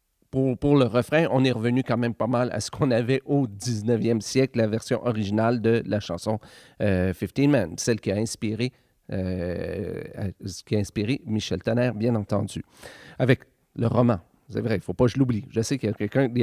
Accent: Canadian